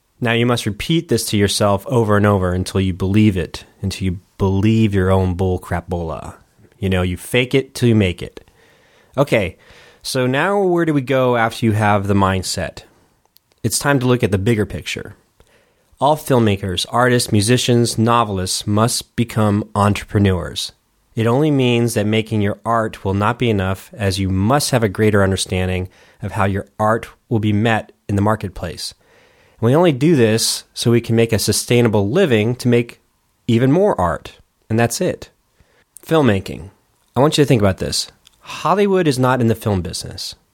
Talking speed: 180 wpm